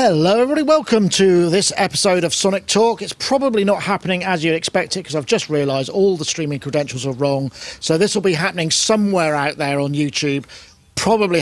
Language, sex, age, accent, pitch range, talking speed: English, male, 40-59, British, 145-195 Hz, 200 wpm